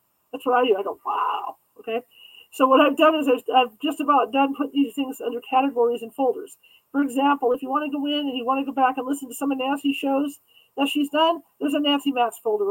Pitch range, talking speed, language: 240-295 Hz, 250 wpm, English